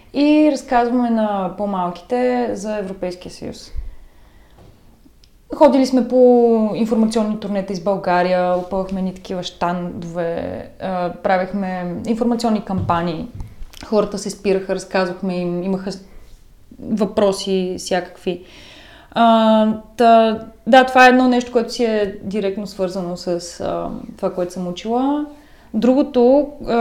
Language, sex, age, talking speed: Bulgarian, female, 20-39, 105 wpm